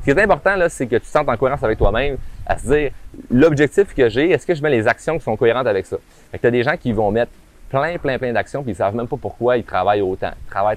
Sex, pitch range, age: male, 100-120 Hz, 30-49